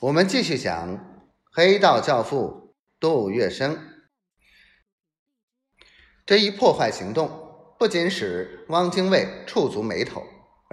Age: 30-49